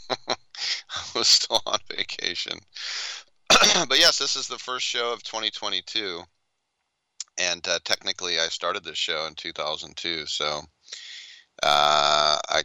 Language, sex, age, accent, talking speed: English, male, 30-49, American, 125 wpm